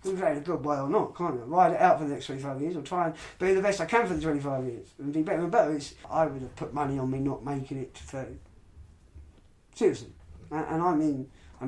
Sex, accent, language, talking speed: male, British, English, 260 wpm